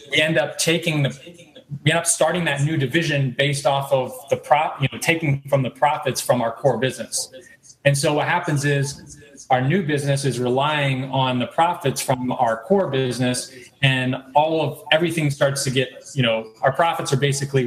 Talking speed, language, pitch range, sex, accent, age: 195 wpm, English, 130-155 Hz, male, American, 20-39